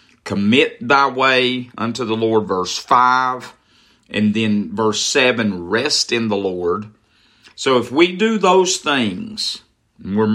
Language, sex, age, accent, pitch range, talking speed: English, male, 50-69, American, 110-160 Hz, 135 wpm